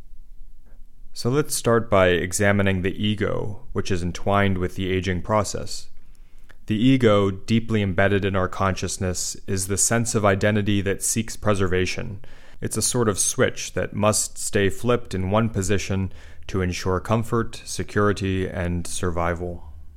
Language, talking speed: English, 140 wpm